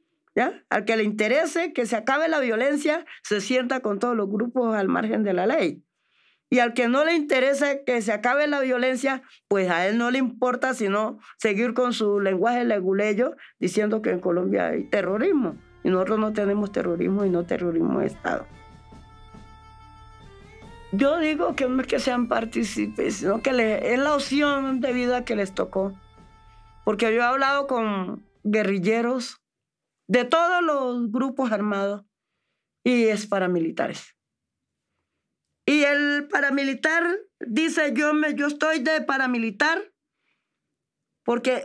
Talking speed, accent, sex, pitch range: 150 wpm, American, female, 210-285 Hz